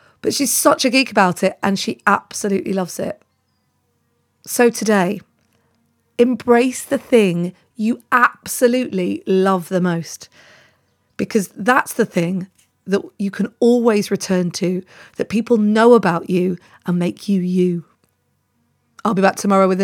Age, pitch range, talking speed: 30-49, 185-240 Hz, 140 wpm